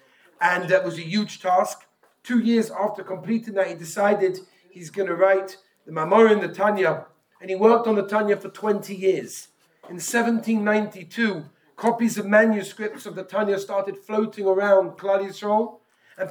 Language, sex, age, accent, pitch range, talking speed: English, male, 40-59, British, 185-210 Hz, 160 wpm